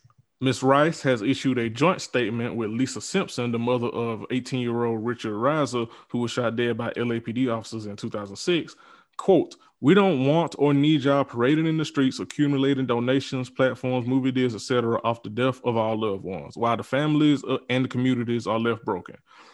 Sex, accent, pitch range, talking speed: male, American, 115-135 Hz, 180 wpm